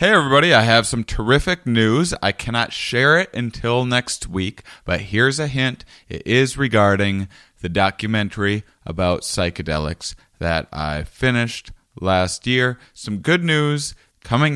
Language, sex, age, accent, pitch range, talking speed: English, male, 30-49, American, 85-115 Hz, 140 wpm